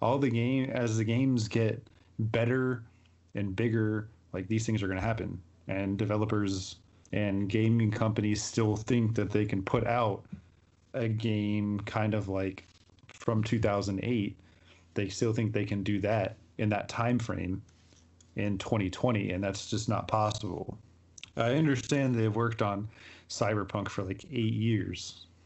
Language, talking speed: English, 150 wpm